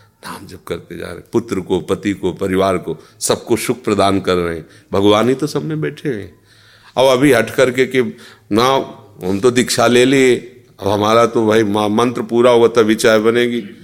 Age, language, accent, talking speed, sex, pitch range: 40-59, Hindi, native, 190 wpm, male, 100-130 Hz